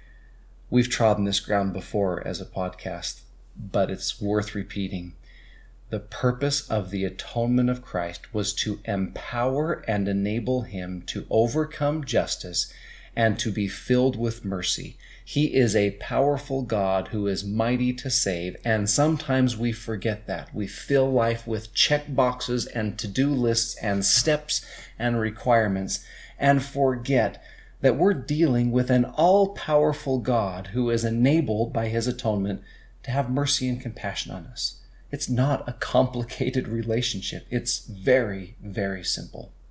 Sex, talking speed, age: male, 140 wpm, 30-49